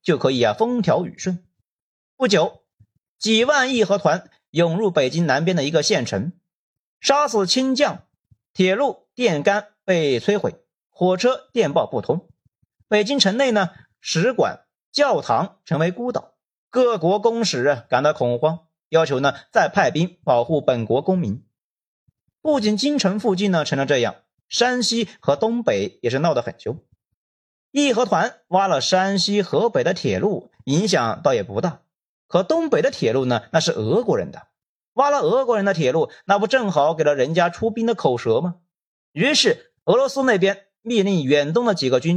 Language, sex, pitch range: Chinese, male, 165-230 Hz